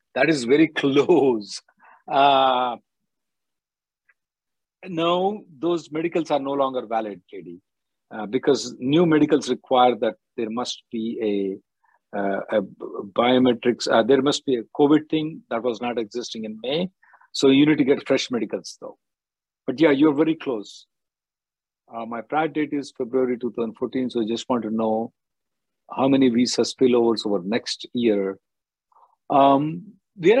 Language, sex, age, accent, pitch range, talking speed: English, male, 50-69, Indian, 115-155 Hz, 145 wpm